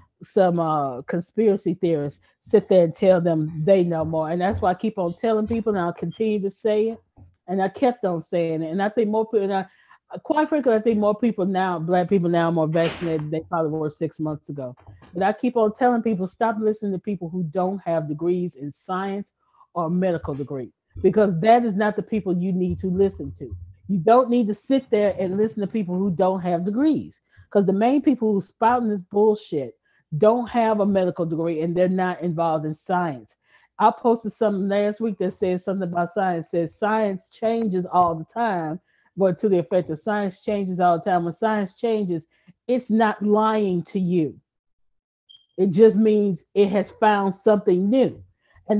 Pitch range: 175-220 Hz